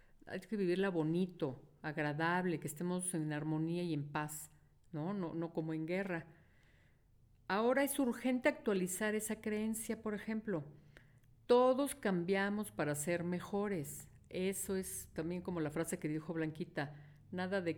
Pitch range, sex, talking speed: 170-215 Hz, female, 140 wpm